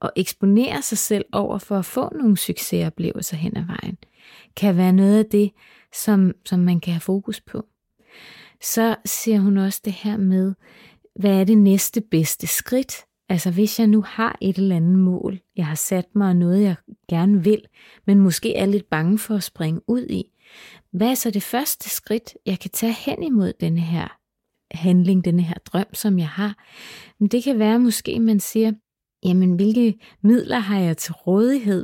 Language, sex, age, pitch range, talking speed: Danish, female, 30-49, 185-225 Hz, 185 wpm